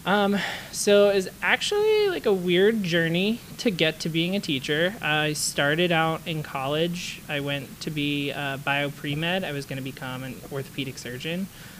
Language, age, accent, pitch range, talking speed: English, 20-39, American, 135-175 Hz, 185 wpm